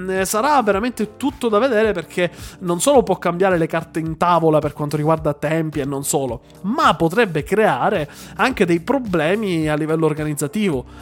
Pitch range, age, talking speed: 160-210 Hz, 20-39, 165 wpm